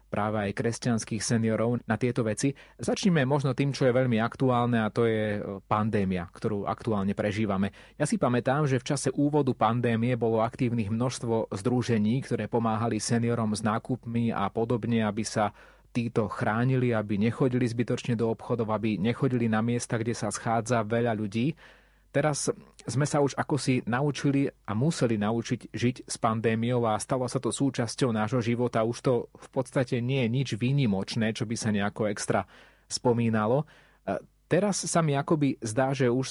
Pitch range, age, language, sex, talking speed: 110-125 Hz, 30-49, Slovak, male, 165 wpm